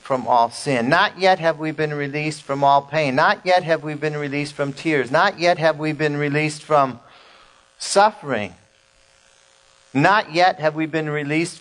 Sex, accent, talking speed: male, American, 175 wpm